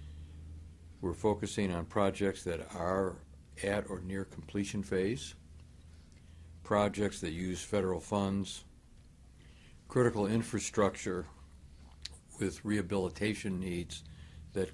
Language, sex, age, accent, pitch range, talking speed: English, male, 60-79, American, 75-100 Hz, 90 wpm